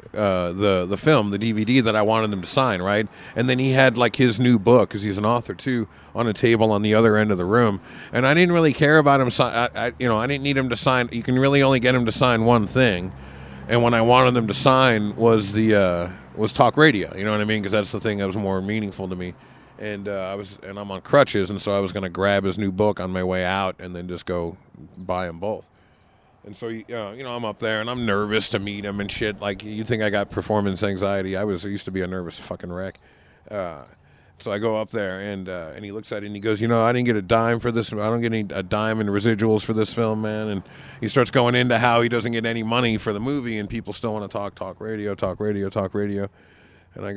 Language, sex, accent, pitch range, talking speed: English, male, American, 100-120 Hz, 280 wpm